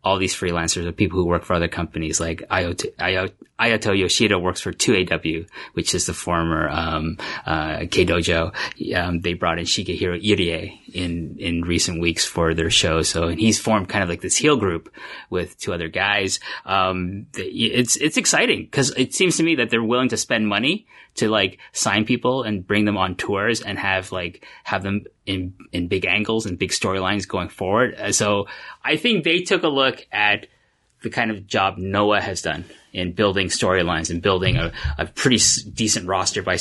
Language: English